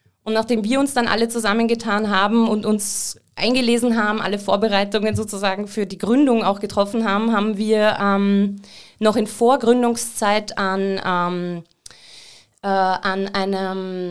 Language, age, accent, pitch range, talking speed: German, 20-39, German, 205-235 Hz, 130 wpm